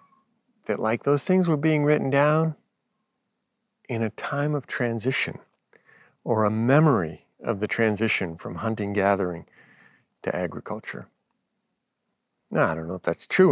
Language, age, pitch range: English, 50-69, 105-130 Hz